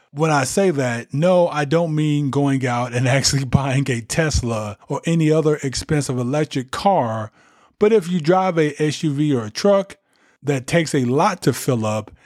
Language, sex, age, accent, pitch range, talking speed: English, male, 20-39, American, 120-155 Hz, 180 wpm